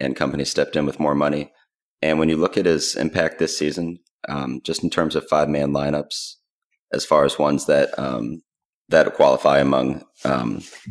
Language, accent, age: English, American, 30-49